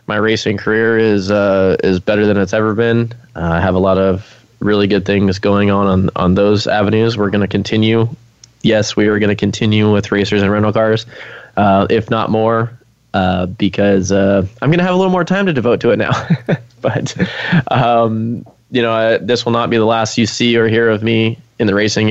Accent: American